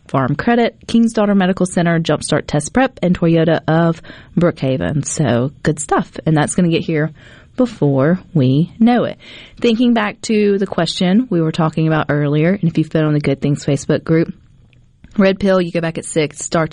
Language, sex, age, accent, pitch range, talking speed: English, female, 30-49, American, 155-200 Hz, 195 wpm